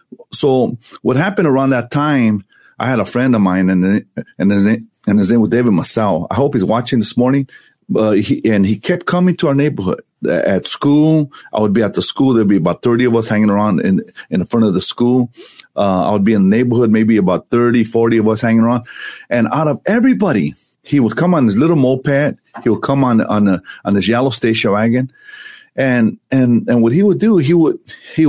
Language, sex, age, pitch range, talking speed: English, male, 30-49, 110-140 Hz, 230 wpm